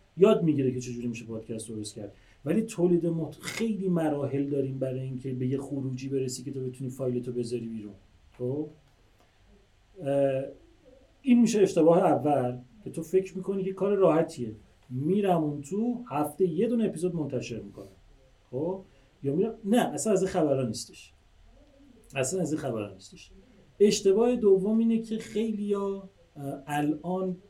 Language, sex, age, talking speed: Persian, male, 40-59, 150 wpm